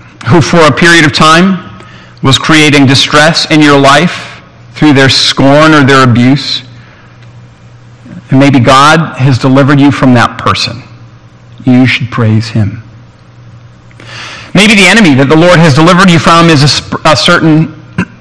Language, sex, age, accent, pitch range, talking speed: English, male, 40-59, American, 120-160 Hz, 150 wpm